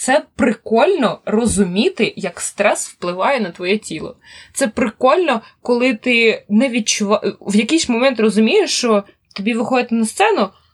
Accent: native